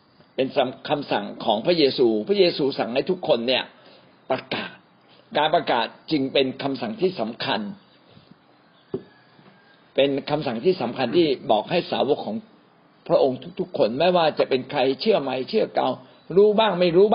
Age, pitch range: 60-79, 140-195 Hz